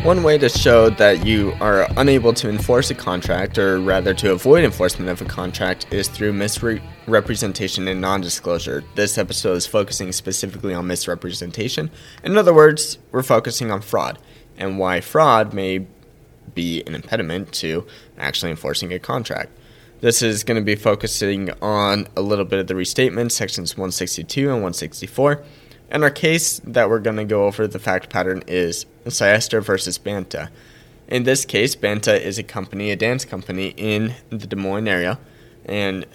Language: English